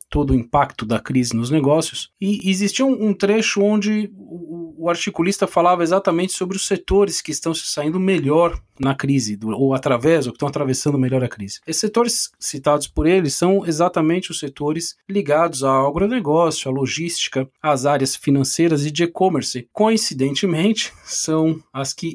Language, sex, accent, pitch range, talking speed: Portuguese, male, Brazilian, 145-195 Hz, 170 wpm